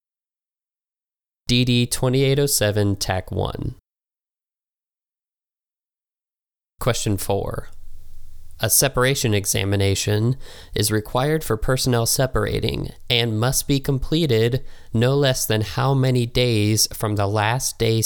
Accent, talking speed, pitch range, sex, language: American, 85 wpm, 105-125 Hz, male, English